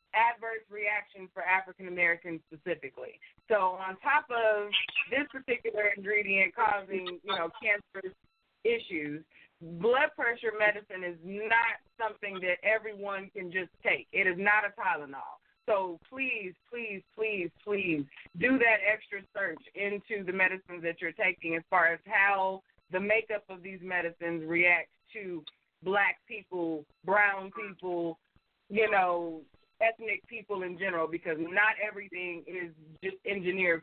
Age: 20-39